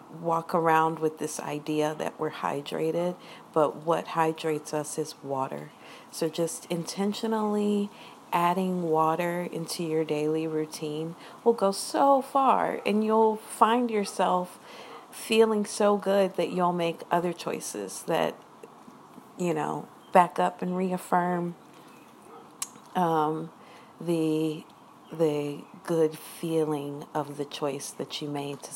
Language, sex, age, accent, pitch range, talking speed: English, female, 50-69, American, 155-195 Hz, 120 wpm